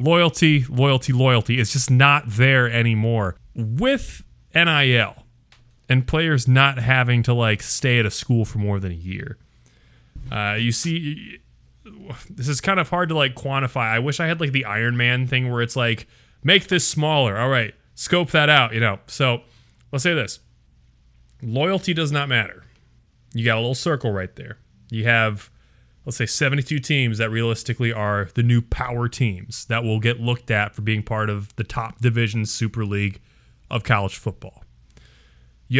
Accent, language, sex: American, English, male